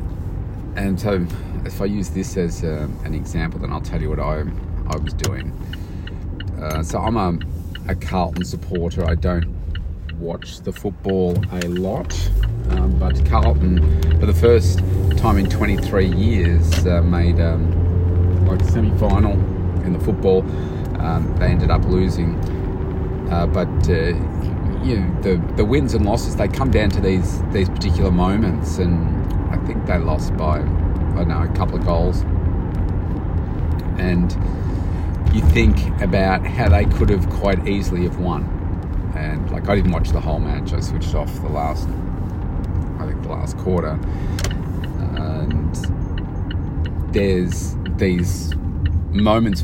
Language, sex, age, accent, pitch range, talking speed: English, male, 30-49, Australian, 80-95 Hz, 145 wpm